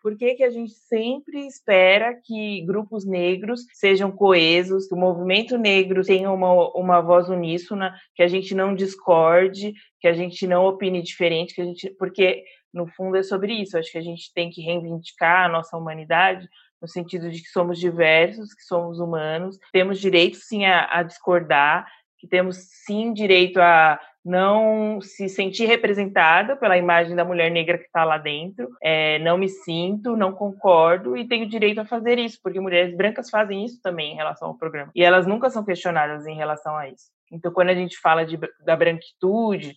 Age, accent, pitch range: 20-39, Brazilian, 170-205 Hz